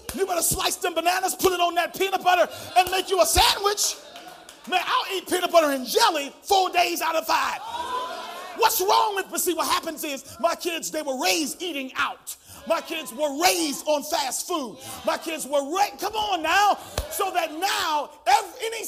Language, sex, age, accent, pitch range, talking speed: English, male, 40-59, American, 325-410 Hz, 195 wpm